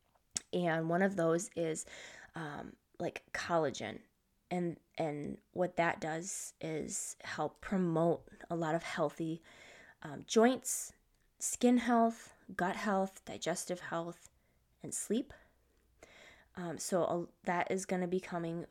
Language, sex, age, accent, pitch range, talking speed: English, female, 20-39, American, 165-205 Hz, 125 wpm